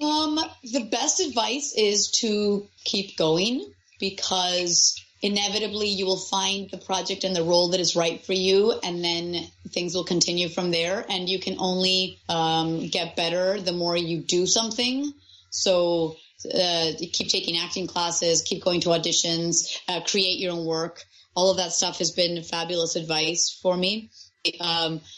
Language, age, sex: English, 30-49, female